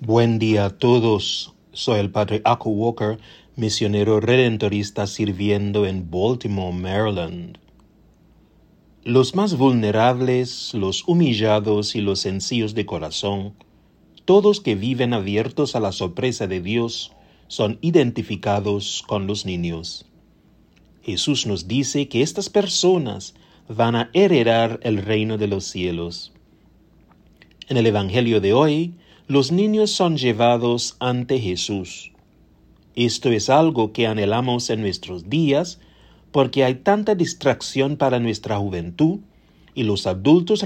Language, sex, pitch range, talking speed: English, male, 100-130 Hz, 120 wpm